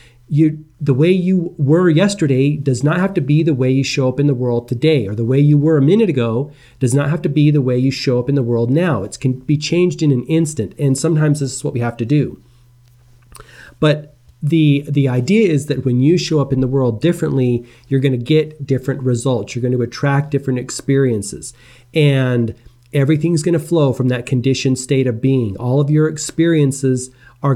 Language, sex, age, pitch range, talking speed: English, male, 40-59, 125-150 Hz, 220 wpm